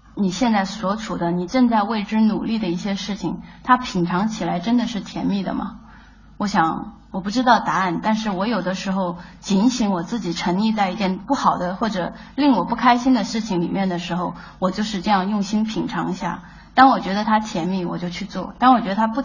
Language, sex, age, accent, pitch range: Chinese, female, 20-39, native, 180-225 Hz